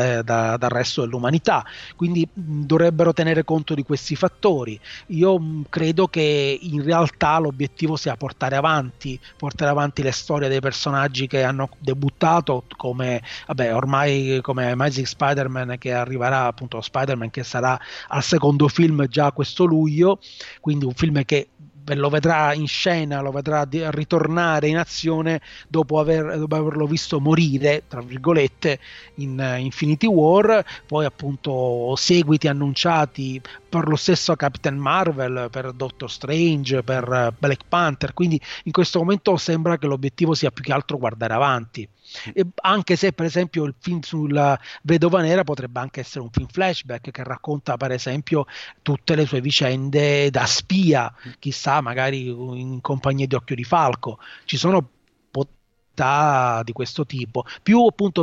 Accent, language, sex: native, Italian, male